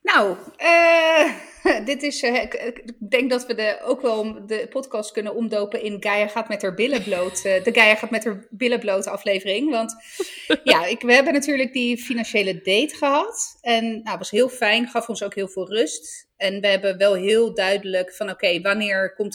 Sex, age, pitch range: female, 30-49, 195-245 Hz